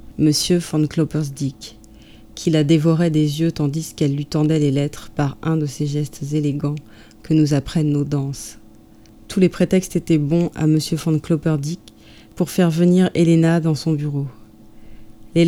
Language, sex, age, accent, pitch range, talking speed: French, female, 30-49, French, 140-165 Hz, 165 wpm